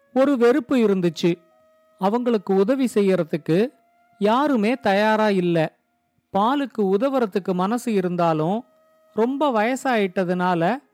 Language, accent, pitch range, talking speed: Tamil, native, 190-255 Hz, 80 wpm